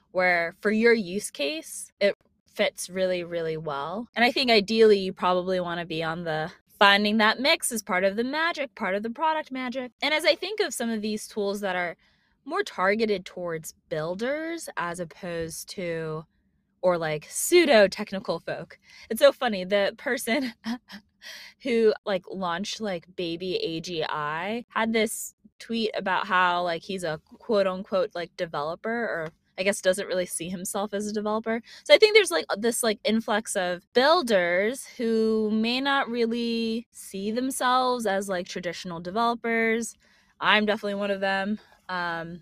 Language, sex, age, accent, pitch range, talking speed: English, female, 20-39, American, 180-230 Hz, 165 wpm